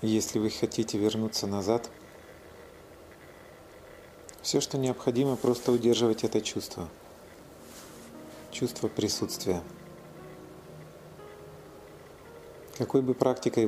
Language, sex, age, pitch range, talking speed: Russian, male, 40-59, 105-125 Hz, 75 wpm